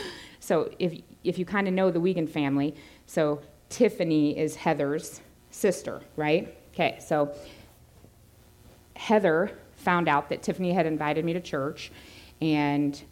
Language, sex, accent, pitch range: English, female, American, 155-225 Hz